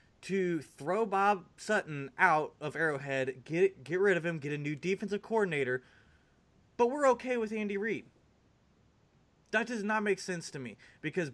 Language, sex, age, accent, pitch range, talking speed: English, male, 20-39, American, 145-215 Hz, 165 wpm